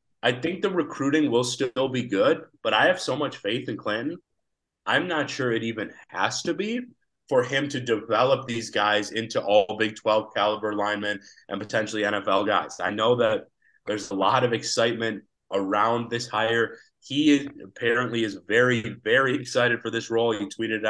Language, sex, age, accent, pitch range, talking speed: English, male, 30-49, American, 110-125 Hz, 180 wpm